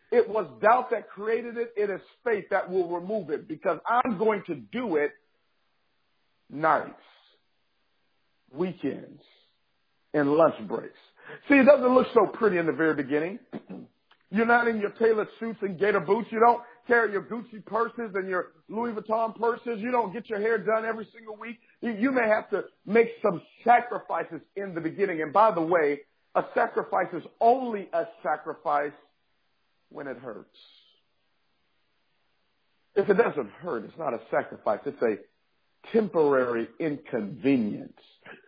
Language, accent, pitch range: English, American, 190-240 Hz